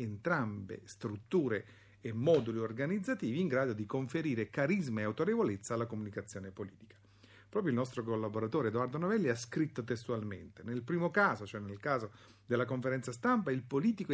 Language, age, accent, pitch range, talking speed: Italian, 50-69, native, 110-180 Hz, 150 wpm